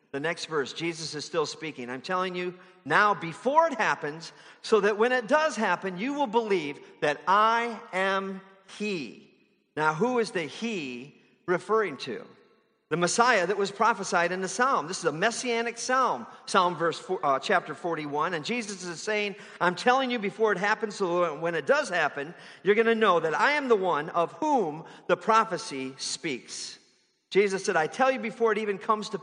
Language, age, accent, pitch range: English, 50-69, American, 170-230 Hz